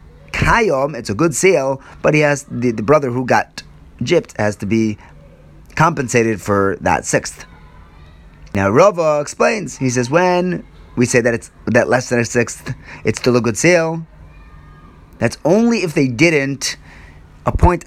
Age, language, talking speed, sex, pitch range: 30-49, English, 150 wpm, male, 80-135 Hz